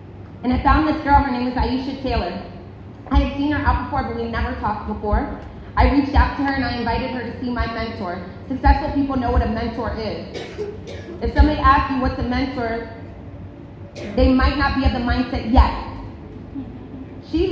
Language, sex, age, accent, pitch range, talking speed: English, female, 30-49, American, 225-280 Hz, 195 wpm